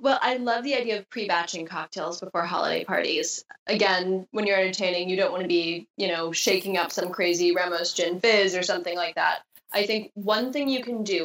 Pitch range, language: 180-225 Hz, English